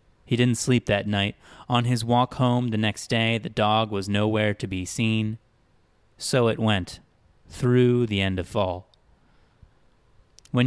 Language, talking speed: English, 155 wpm